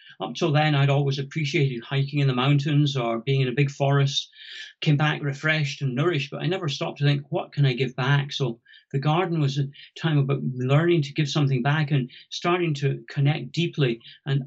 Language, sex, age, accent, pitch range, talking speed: English, male, 40-59, British, 135-160 Hz, 205 wpm